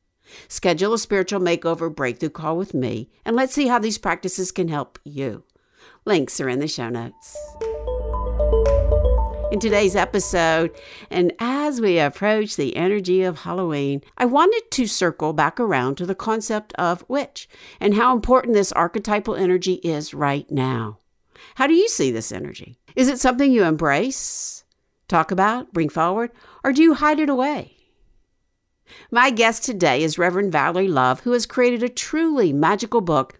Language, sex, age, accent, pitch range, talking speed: English, female, 60-79, American, 160-240 Hz, 160 wpm